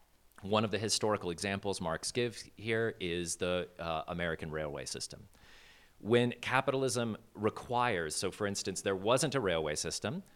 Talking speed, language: 145 wpm, English